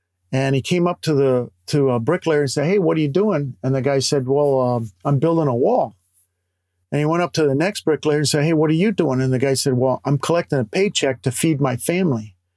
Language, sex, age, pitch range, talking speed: English, male, 50-69, 125-175 Hz, 260 wpm